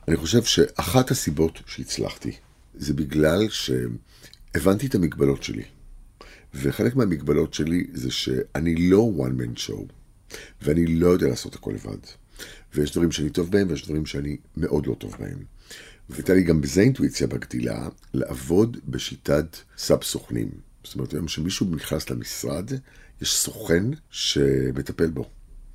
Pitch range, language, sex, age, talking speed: 70-90 Hz, Hebrew, male, 50-69, 135 wpm